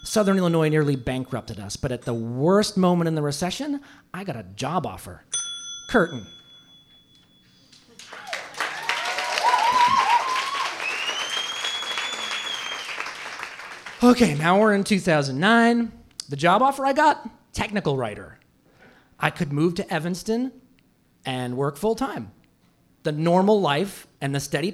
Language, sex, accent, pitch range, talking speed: English, male, American, 125-190 Hz, 110 wpm